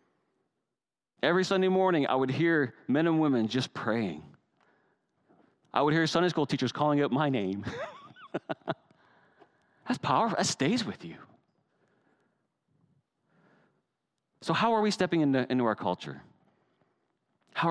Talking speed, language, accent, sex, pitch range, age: 125 wpm, English, American, male, 155-200 Hz, 40-59